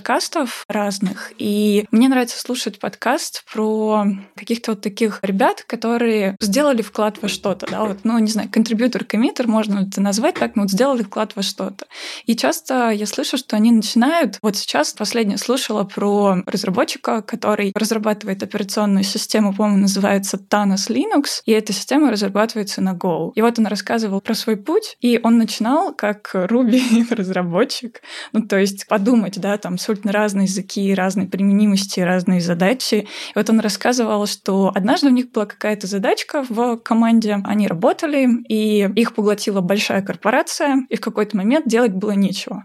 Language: Russian